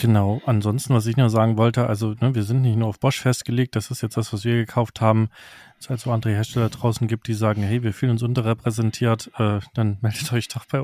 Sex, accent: male, German